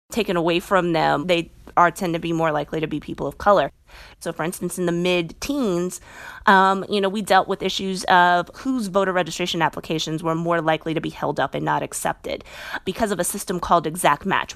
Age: 20-39